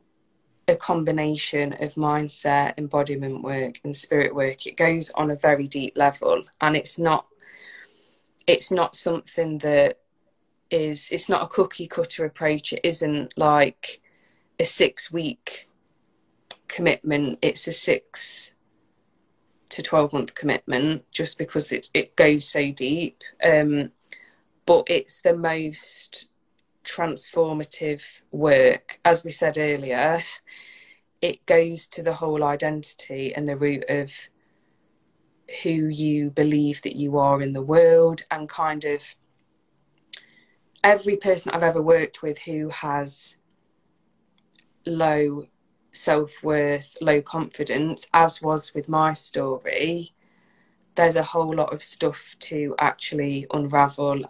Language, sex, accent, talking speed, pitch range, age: English, female, British, 120 wpm, 145-165 Hz, 20-39